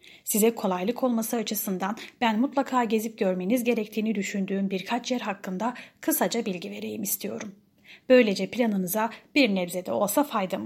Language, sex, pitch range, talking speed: Turkish, female, 195-245 Hz, 130 wpm